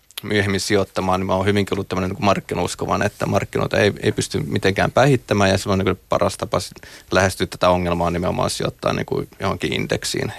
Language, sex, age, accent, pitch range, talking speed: Finnish, male, 30-49, native, 95-105 Hz, 175 wpm